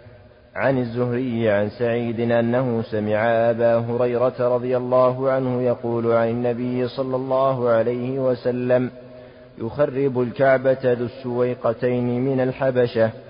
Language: Arabic